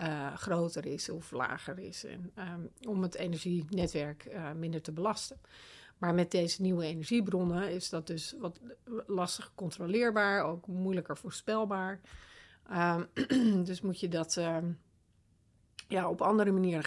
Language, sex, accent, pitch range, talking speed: Dutch, female, Dutch, 165-200 Hz, 130 wpm